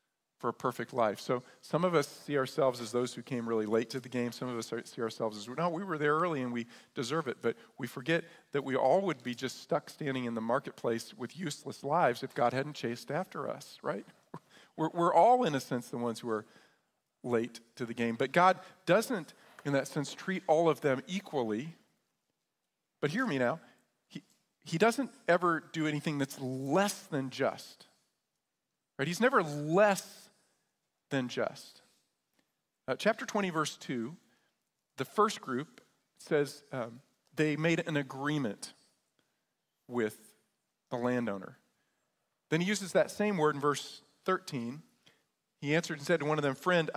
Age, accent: 40-59, American